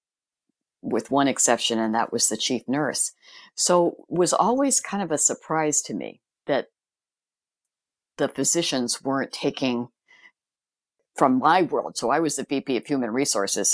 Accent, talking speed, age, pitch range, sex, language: American, 155 wpm, 60-79, 130-155 Hz, female, English